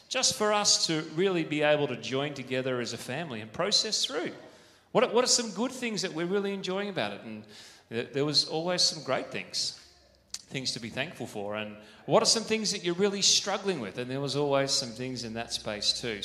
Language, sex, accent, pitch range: English, male, Australian, 120-165 Hz